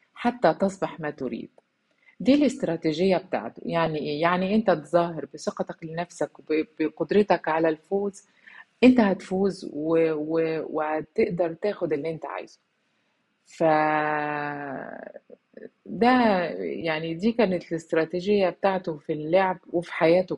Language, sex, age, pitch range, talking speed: Arabic, female, 30-49, 150-190 Hz, 105 wpm